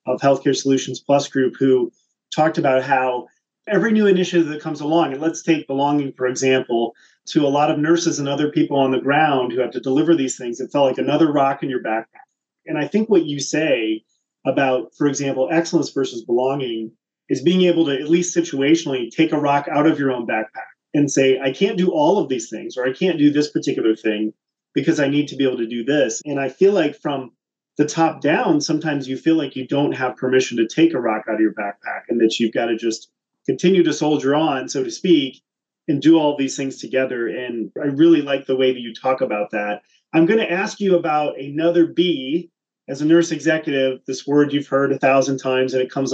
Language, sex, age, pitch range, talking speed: English, male, 30-49, 130-165 Hz, 225 wpm